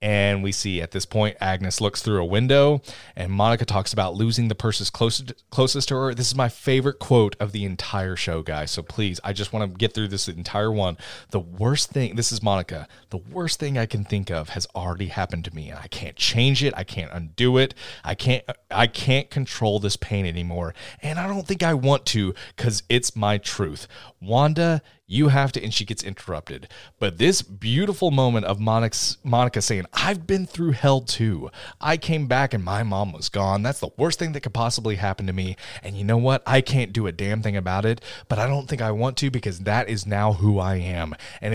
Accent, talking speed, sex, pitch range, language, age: American, 220 wpm, male, 100-130 Hz, English, 30-49